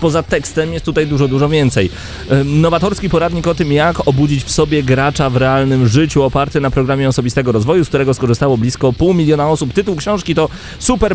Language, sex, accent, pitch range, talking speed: Polish, male, native, 120-150 Hz, 190 wpm